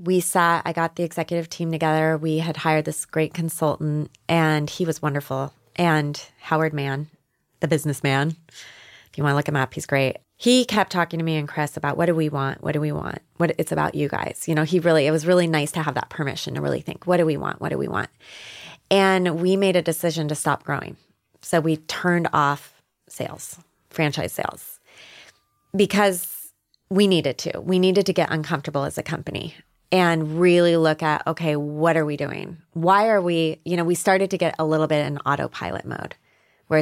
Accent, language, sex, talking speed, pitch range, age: American, English, female, 205 wpm, 150-180 Hz, 20-39